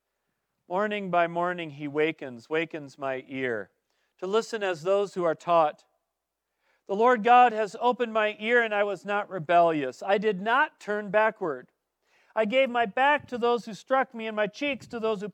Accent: American